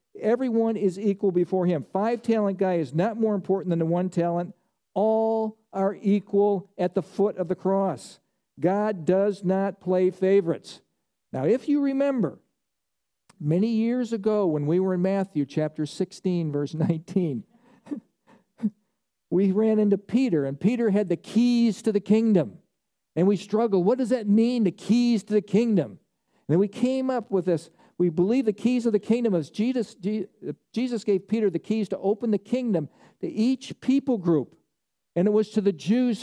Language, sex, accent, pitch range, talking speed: English, male, American, 180-220 Hz, 170 wpm